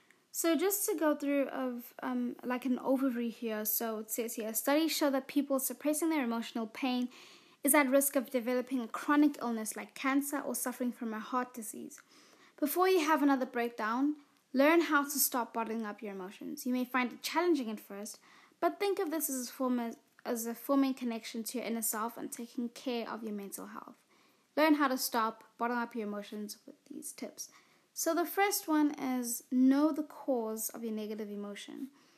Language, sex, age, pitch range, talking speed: English, female, 20-39, 230-295 Hz, 190 wpm